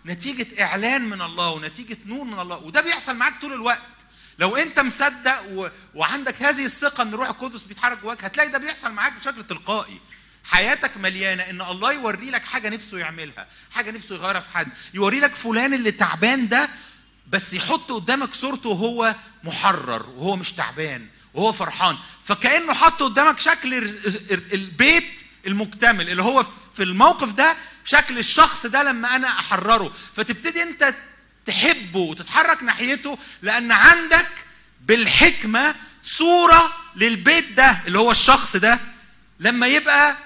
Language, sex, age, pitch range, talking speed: English, male, 30-49, 185-275 Hz, 140 wpm